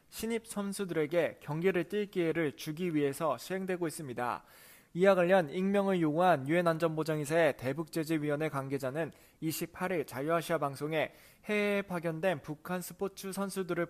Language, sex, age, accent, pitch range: Korean, male, 20-39, native, 155-195 Hz